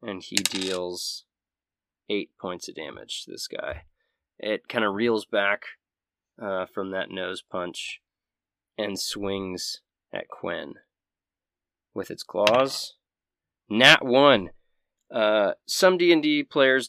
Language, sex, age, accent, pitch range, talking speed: English, male, 20-39, American, 100-120 Hz, 115 wpm